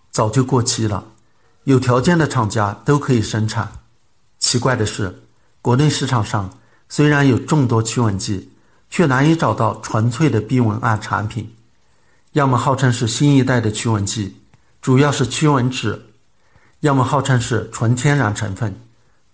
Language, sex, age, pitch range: Chinese, male, 60-79, 110-140 Hz